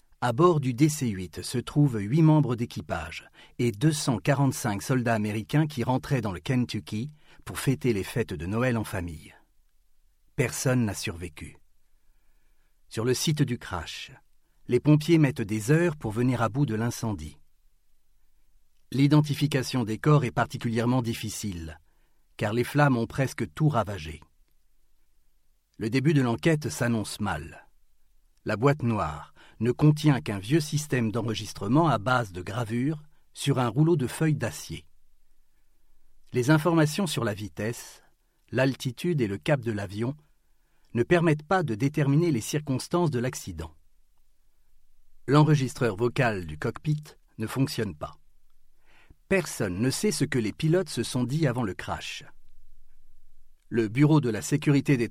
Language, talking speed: French, 140 wpm